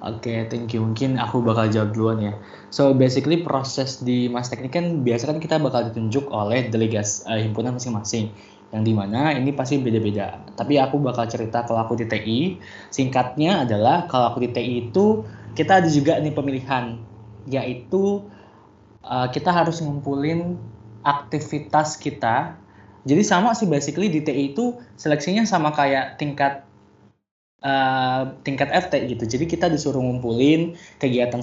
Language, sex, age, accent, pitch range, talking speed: Indonesian, male, 20-39, native, 115-145 Hz, 145 wpm